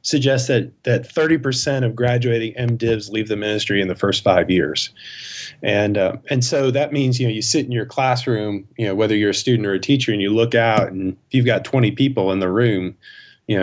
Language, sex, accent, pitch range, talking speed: English, male, American, 100-125 Hz, 230 wpm